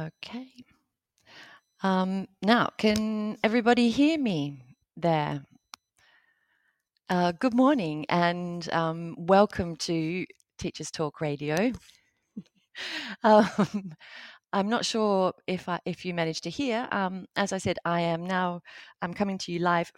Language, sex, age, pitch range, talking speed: English, female, 30-49, 160-190 Hz, 125 wpm